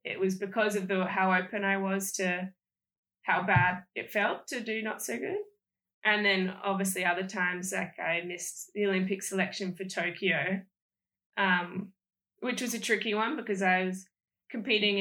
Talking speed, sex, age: 165 wpm, female, 10-29